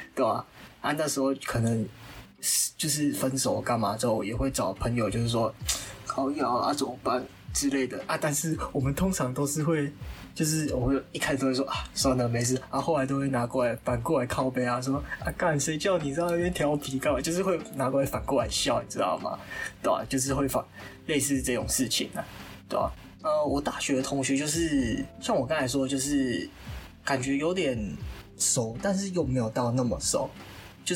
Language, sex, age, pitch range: Chinese, male, 20-39, 125-150 Hz